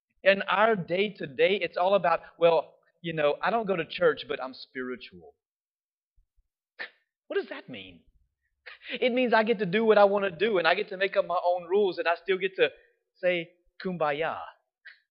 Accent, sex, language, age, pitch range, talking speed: American, male, English, 30-49, 160-220 Hz, 200 wpm